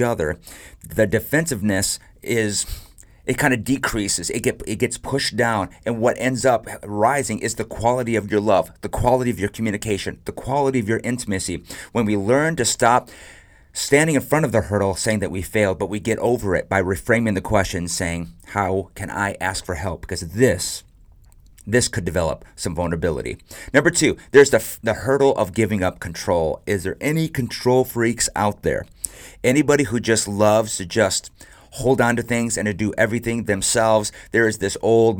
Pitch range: 95-120 Hz